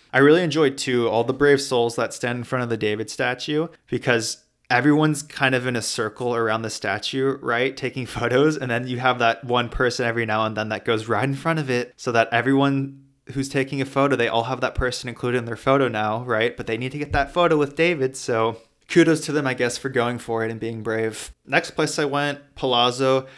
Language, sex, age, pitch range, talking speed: English, male, 20-39, 115-135 Hz, 235 wpm